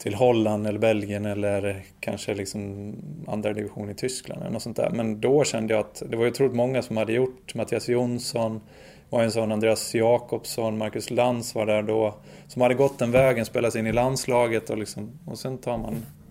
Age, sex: 20-39, male